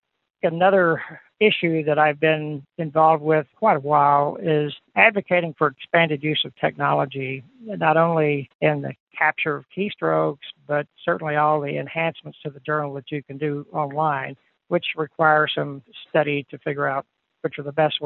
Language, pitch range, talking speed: English, 145-175 Hz, 160 wpm